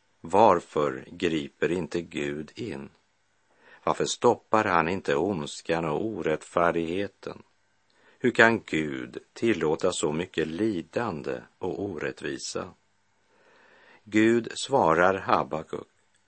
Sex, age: male, 50-69